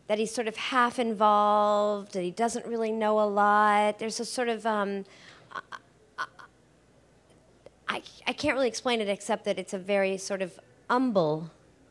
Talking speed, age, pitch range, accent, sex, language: 160 wpm, 40-59, 180-215 Hz, American, female, English